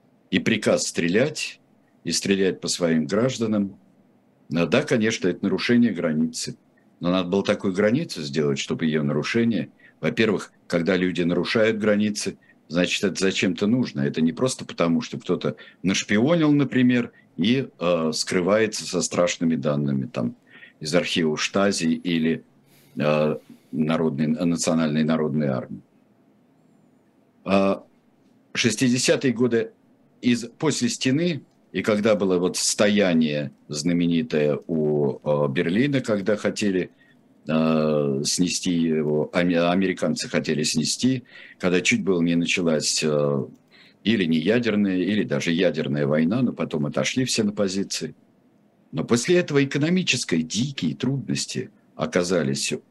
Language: Russian